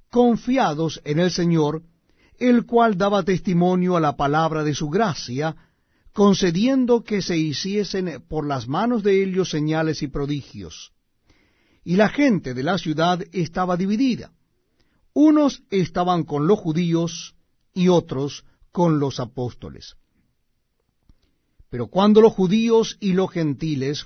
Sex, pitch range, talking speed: male, 145-190 Hz, 125 wpm